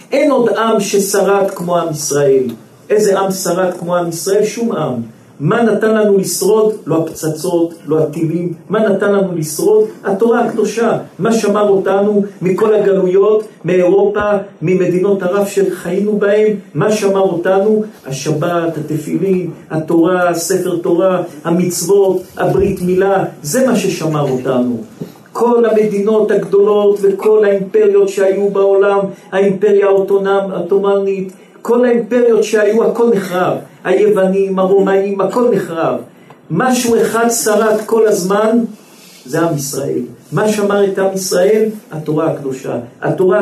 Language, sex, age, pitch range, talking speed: Hebrew, male, 50-69, 180-210 Hz, 120 wpm